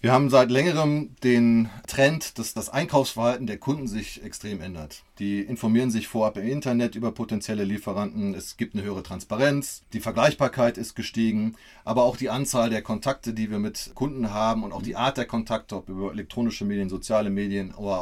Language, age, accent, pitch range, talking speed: German, 30-49, German, 110-125 Hz, 185 wpm